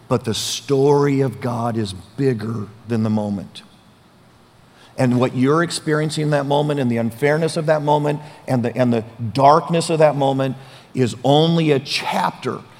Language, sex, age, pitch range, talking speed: English, male, 50-69, 115-150 Hz, 160 wpm